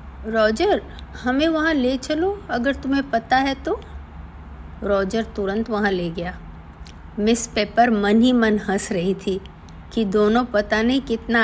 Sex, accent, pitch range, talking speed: female, native, 170-245 Hz, 145 wpm